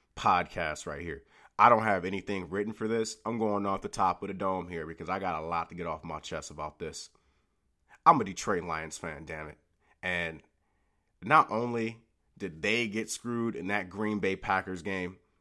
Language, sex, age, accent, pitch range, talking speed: English, male, 30-49, American, 95-125 Hz, 200 wpm